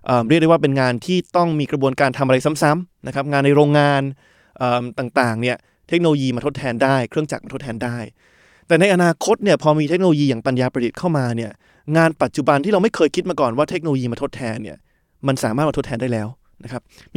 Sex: male